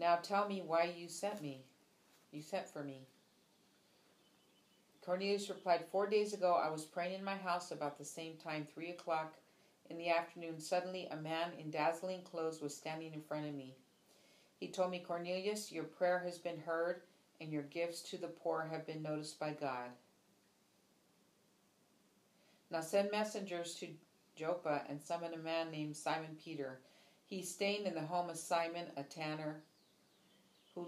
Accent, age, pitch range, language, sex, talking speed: American, 40-59, 155-180 Hz, English, female, 165 wpm